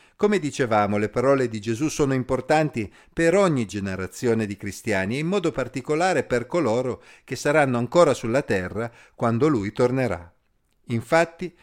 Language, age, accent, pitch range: Italian, 50-69, native, 115-165 Hz